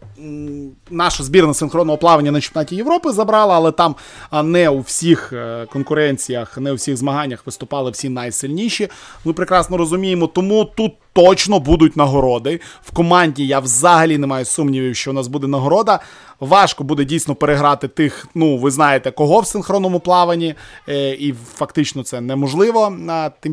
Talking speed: 150 wpm